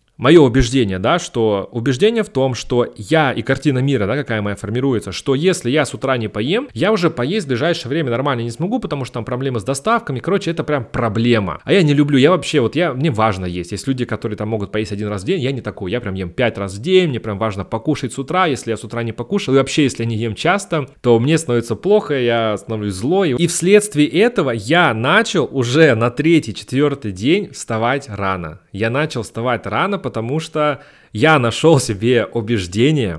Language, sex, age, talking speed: Russian, male, 30-49, 220 wpm